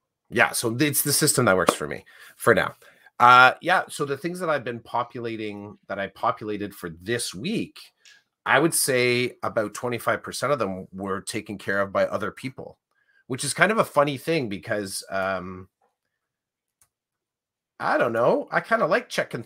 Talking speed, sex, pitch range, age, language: 175 wpm, male, 90-125 Hz, 30-49, English